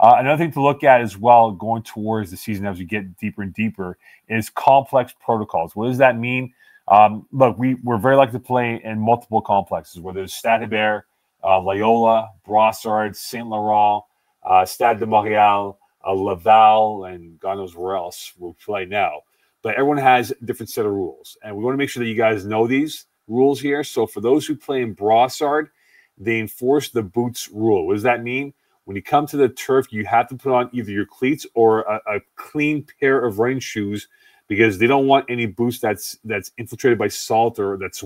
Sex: male